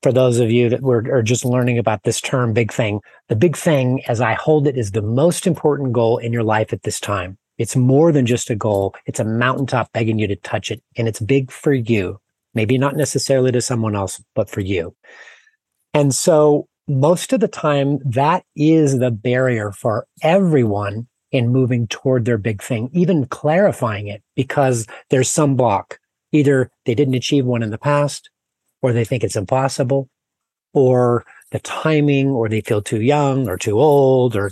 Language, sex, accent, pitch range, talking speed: English, male, American, 115-140 Hz, 190 wpm